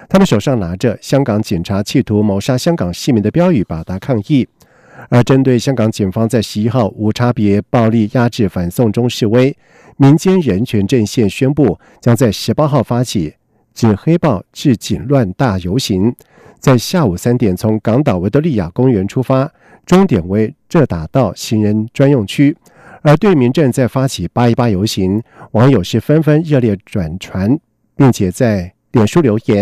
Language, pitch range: German, 105-135 Hz